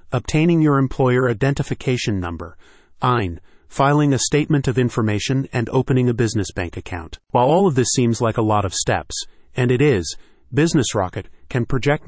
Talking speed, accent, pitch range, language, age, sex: 170 wpm, American, 105-135 Hz, English, 30-49, male